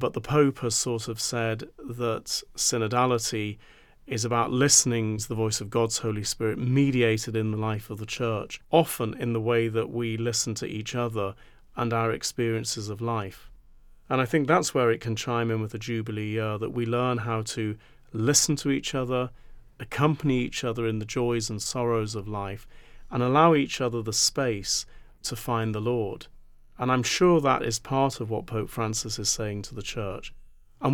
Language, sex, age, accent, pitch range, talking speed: English, male, 40-59, British, 110-125 Hz, 190 wpm